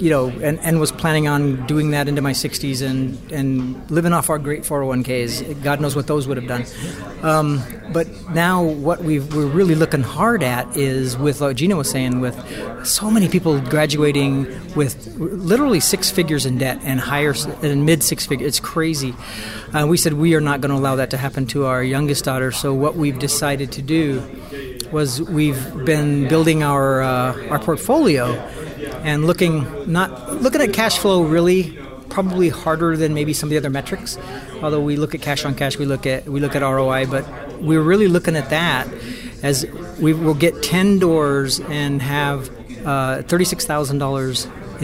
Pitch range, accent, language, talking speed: 135-160 Hz, American, English, 185 wpm